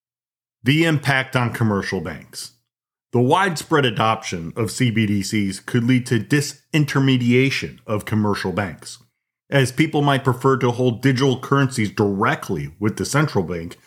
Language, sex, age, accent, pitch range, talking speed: English, male, 40-59, American, 110-145 Hz, 130 wpm